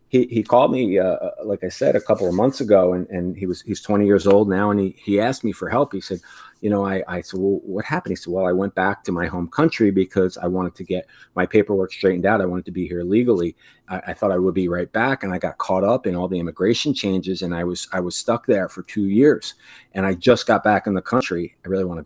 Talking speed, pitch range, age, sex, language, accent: 285 wpm, 95-110 Hz, 30-49, male, English, American